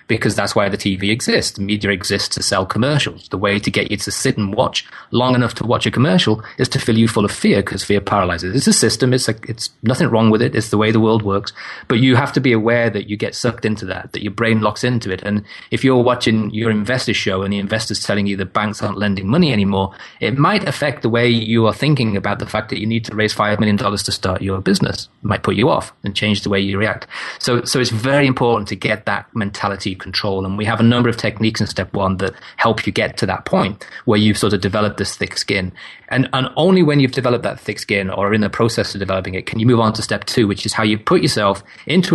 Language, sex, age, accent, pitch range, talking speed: English, male, 30-49, British, 100-120 Hz, 270 wpm